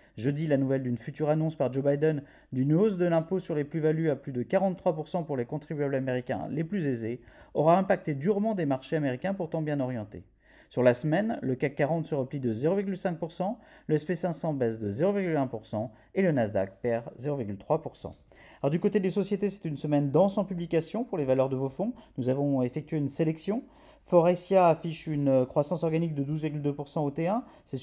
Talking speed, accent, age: 190 wpm, French, 40-59